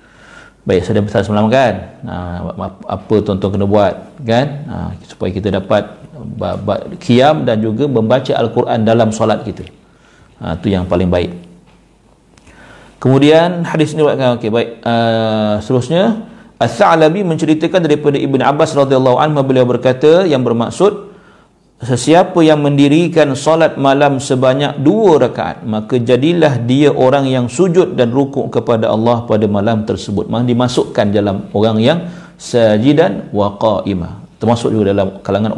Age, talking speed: 50-69, 140 wpm